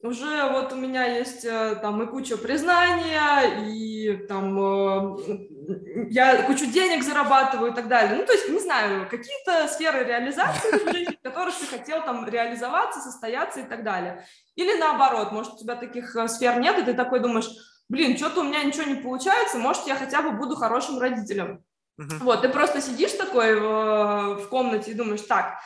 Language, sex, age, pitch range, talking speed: Russian, female, 20-39, 220-295 Hz, 165 wpm